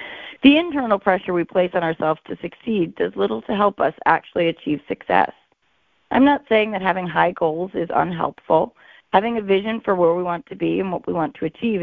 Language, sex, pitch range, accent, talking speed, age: English, female, 170-220 Hz, American, 210 wpm, 30-49